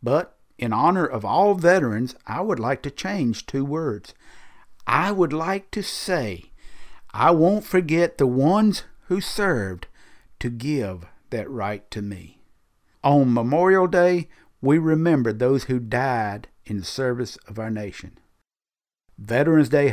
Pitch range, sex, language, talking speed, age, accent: 110-165 Hz, male, English, 140 wpm, 50-69, American